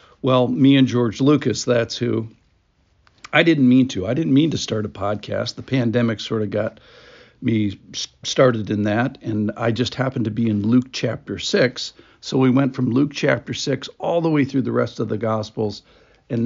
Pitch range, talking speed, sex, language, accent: 110-130 Hz, 195 wpm, male, English, American